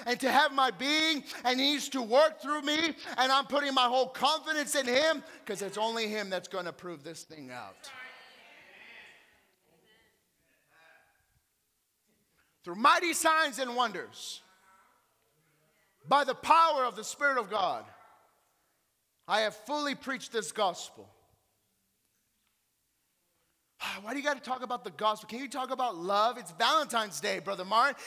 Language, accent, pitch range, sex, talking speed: English, American, 225-340 Hz, male, 145 wpm